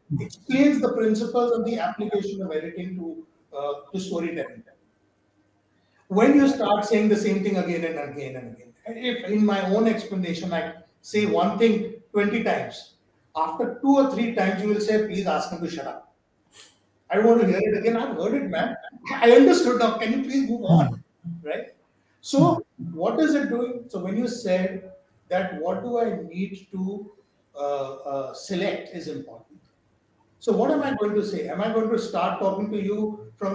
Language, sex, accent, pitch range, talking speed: Hindi, male, native, 180-235 Hz, 190 wpm